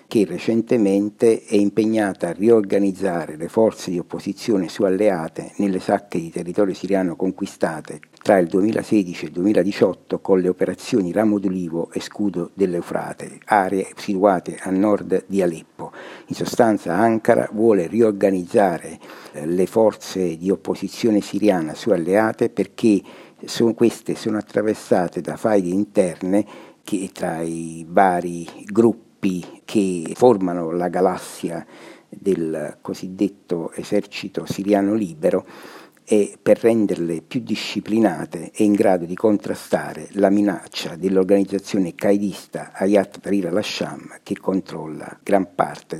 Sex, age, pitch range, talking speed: male, 60-79, 90-105 Hz, 125 wpm